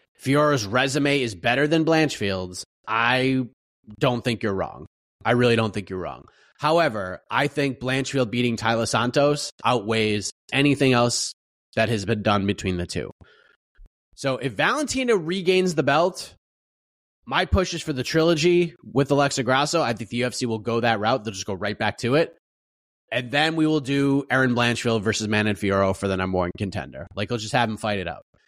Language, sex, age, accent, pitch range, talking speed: English, male, 30-49, American, 110-155 Hz, 185 wpm